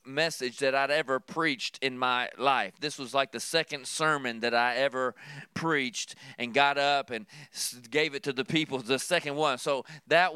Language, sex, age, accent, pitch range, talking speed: English, male, 40-59, American, 135-170 Hz, 185 wpm